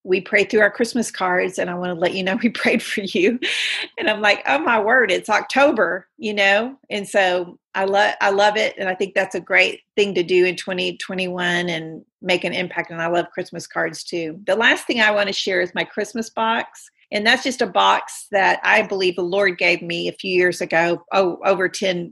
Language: English